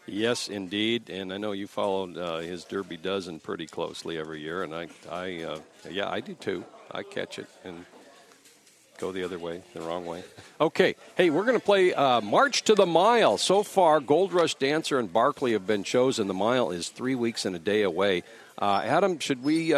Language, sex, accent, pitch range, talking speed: English, male, American, 95-135 Hz, 205 wpm